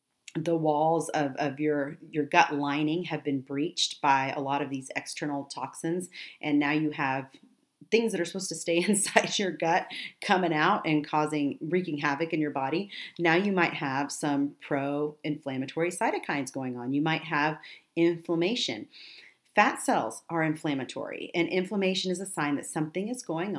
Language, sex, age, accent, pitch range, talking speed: English, female, 40-59, American, 145-180 Hz, 170 wpm